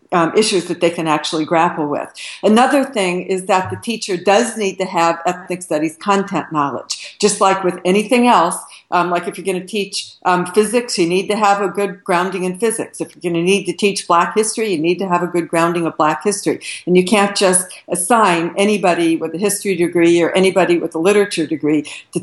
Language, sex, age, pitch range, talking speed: English, female, 60-79, 170-205 Hz, 220 wpm